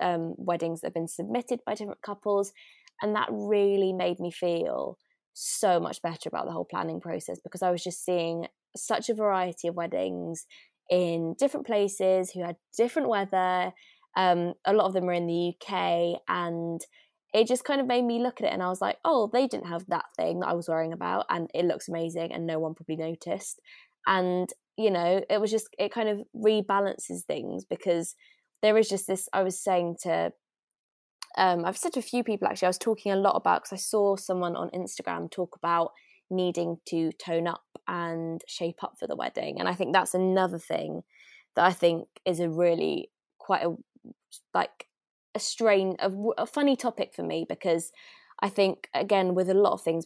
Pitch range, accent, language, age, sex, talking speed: 170-205 Hz, British, English, 20-39, female, 200 wpm